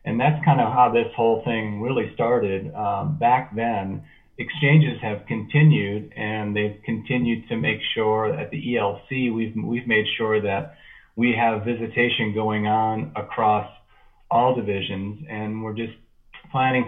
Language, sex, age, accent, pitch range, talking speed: English, male, 40-59, American, 105-120 Hz, 150 wpm